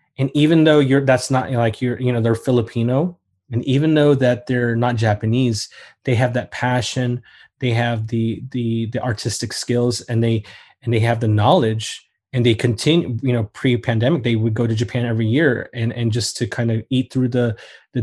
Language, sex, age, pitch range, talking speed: English, male, 20-39, 115-130 Hz, 200 wpm